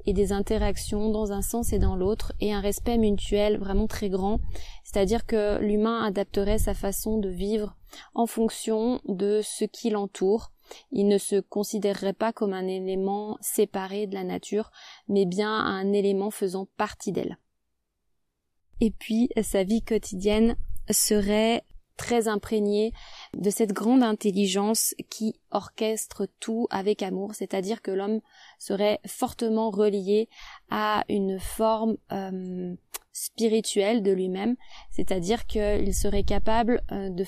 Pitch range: 200-220 Hz